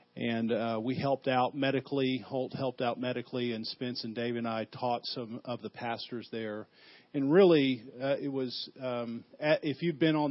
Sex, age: male, 50-69